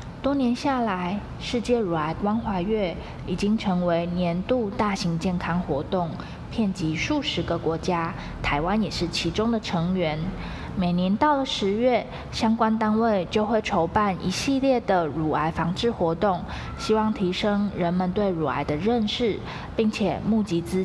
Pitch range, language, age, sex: 175-220 Hz, Chinese, 20-39, female